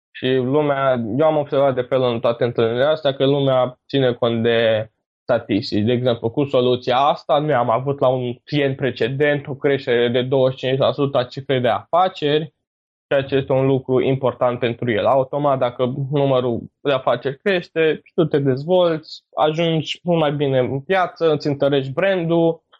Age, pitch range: 20-39, 125-160 Hz